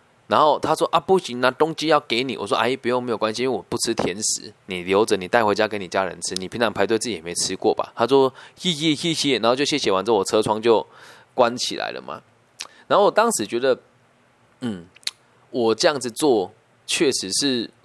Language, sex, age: Chinese, male, 20-39